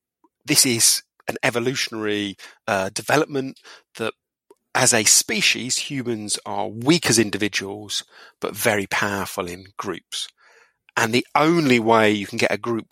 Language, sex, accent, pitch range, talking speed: English, male, British, 100-125 Hz, 135 wpm